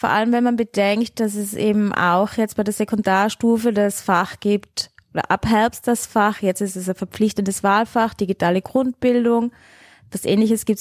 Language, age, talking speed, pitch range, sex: German, 20-39, 180 wpm, 205-245 Hz, female